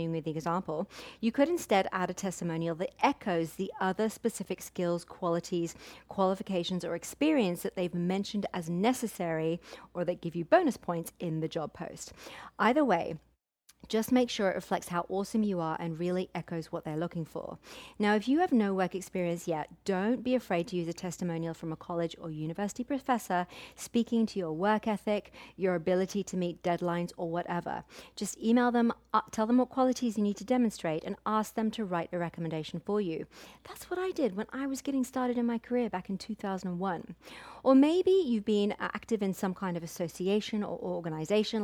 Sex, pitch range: female, 175-225 Hz